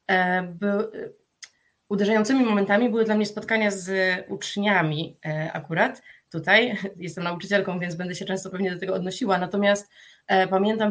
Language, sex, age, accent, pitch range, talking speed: Polish, female, 20-39, native, 185-210 Hz, 120 wpm